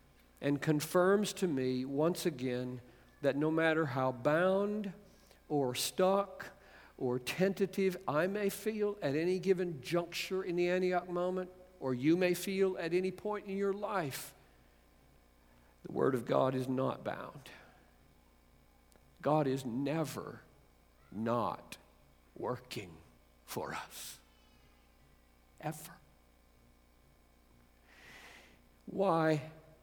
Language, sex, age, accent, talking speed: English, male, 50-69, American, 105 wpm